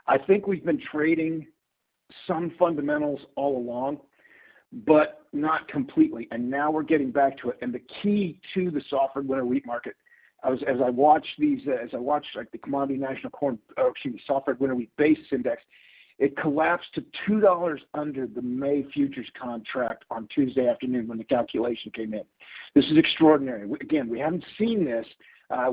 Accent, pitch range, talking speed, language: American, 135-195 Hz, 180 wpm, English